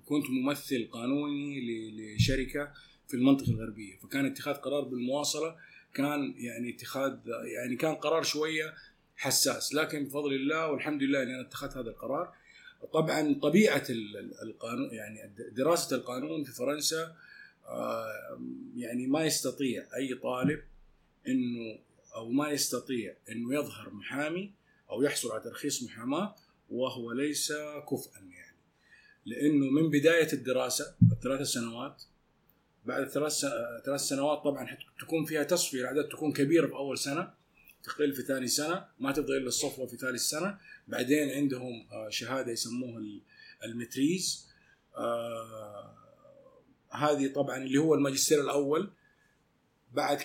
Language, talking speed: Arabic, 115 wpm